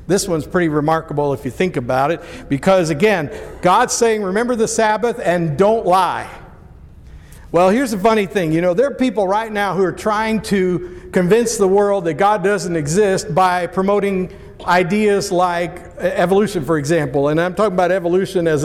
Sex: male